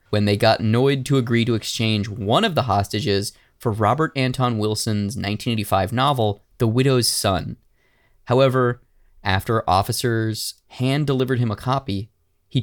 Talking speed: 145 wpm